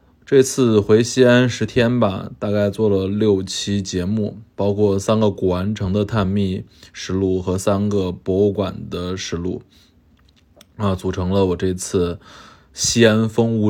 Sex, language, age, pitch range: male, Chinese, 20-39, 90-110 Hz